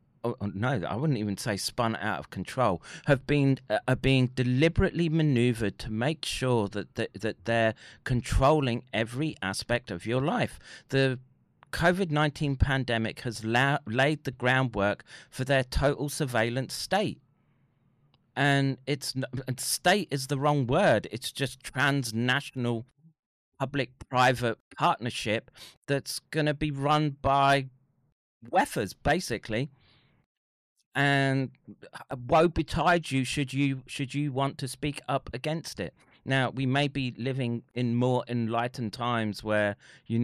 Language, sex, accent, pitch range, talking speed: English, male, British, 115-140 Hz, 135 wpm